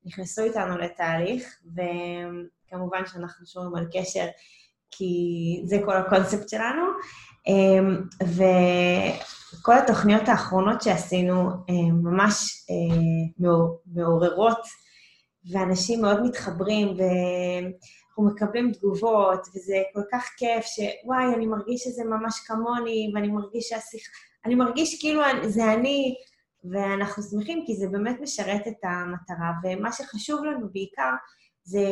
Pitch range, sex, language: 180-220 Hz, female, Hebrew